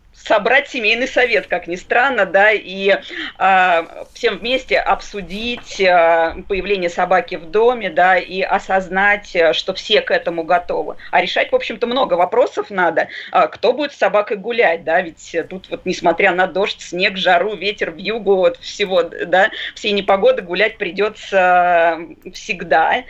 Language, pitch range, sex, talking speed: Russian, 180-220 Hz, female, 150 wpm